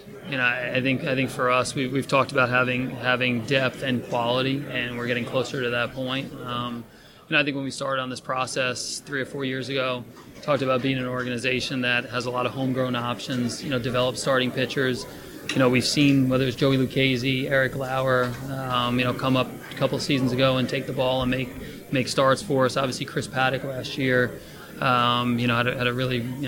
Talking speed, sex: 230 wpm, male